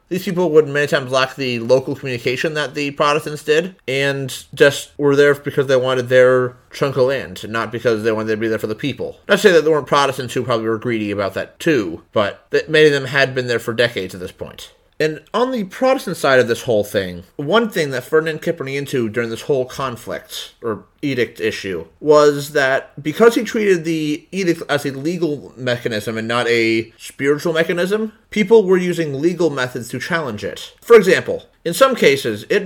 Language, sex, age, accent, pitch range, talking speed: English, male, 30-49, American, 120-165 Hz, 210 wpm